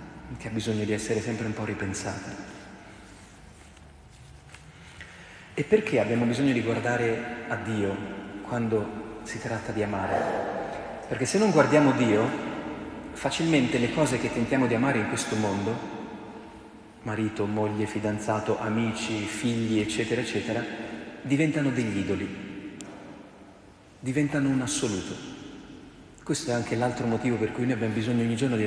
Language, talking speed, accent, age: Italian, 130 wpm, native, 40-59